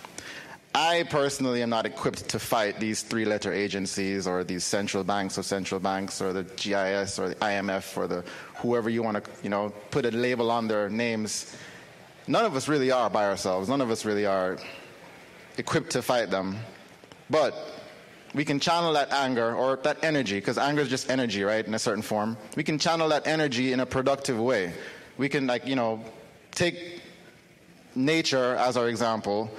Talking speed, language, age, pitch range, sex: 185 wpm, English, 30-49, 110-140 Hz, male